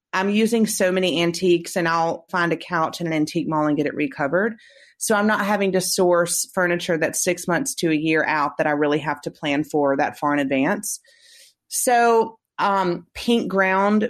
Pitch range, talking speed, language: 160-195 Hz, 200 wpm, English